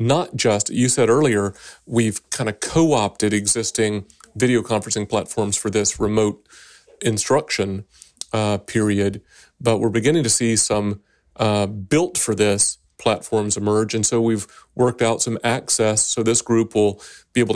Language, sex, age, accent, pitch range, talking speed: English, male, 40-59, American, 105-125 Hz, 145 wpm